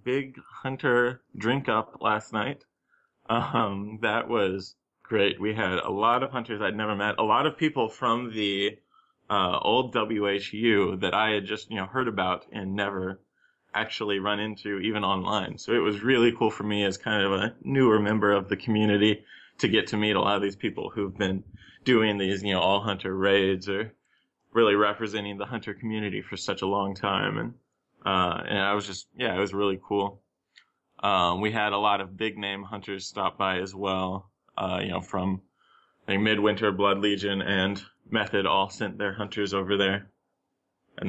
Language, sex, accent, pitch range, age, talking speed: English, male, American, 100-110 Hz, 20-39, 190 wpm